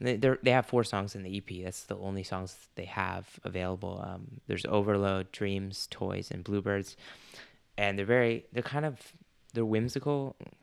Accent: American